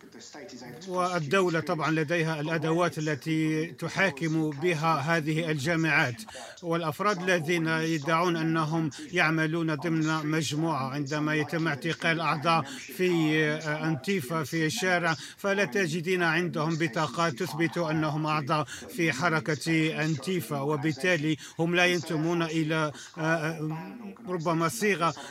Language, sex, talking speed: Arabic, male, 95 wpm